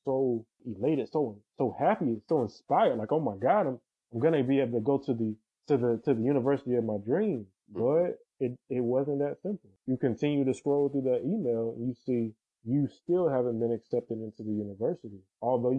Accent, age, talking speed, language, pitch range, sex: American, 20-39, 200 wpm, English, 115-145 Hz, male